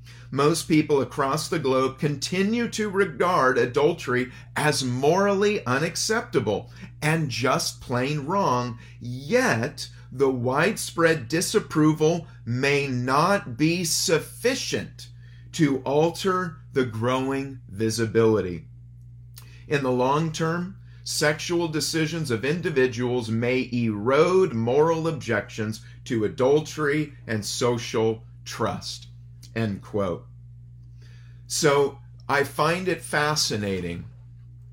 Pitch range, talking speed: 120-150 Hz, 90 wpm